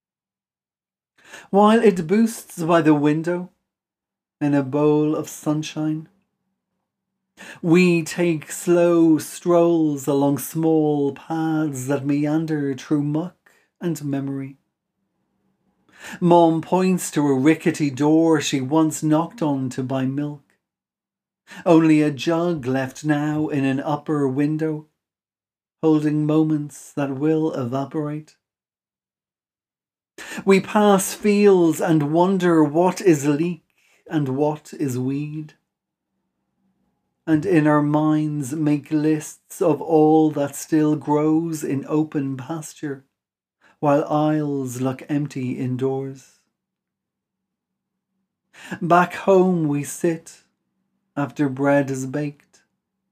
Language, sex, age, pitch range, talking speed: English, male, 40-59, 145-175 Hz, 100 wpm